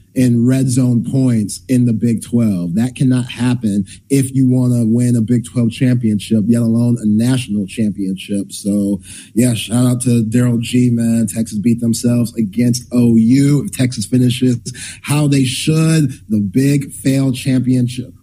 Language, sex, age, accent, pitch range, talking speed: English, male, 30-49, American, 115-140 Hz, 160 wpm